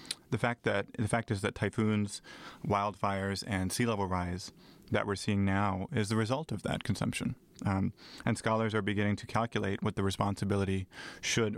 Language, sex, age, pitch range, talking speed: English, male, 30-49, 95-110 Hz, 175 wpm